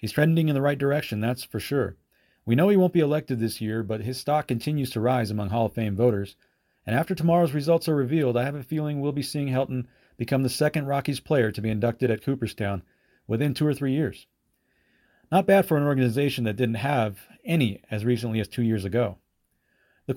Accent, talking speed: American, 215 wpm